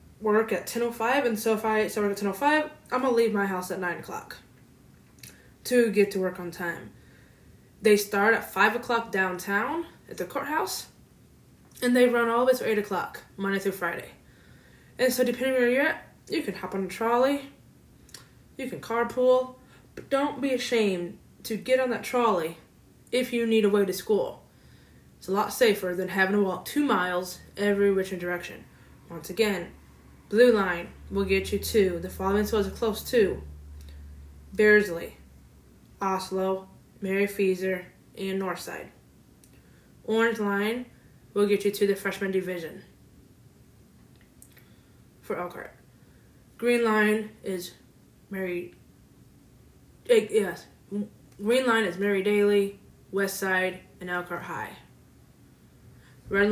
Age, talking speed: 20-39, 145 wpm